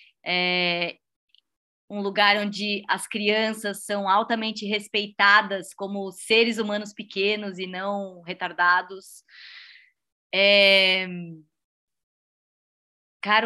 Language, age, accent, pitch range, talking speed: Portuguese, 20-39, Brazilian, 195-235 Hz, 80 wpm